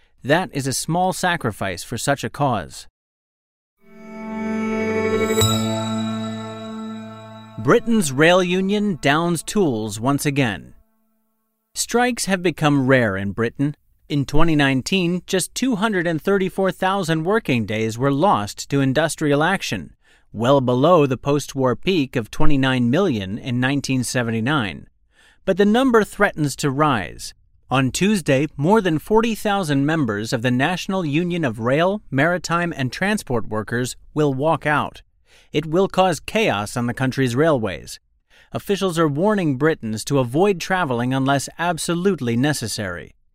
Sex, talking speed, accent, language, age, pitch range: male, 120 wpm, American, English, 40-59, 125-185 Hz